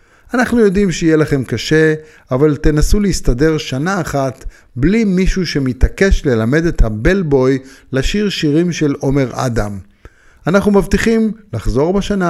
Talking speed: 120 wpm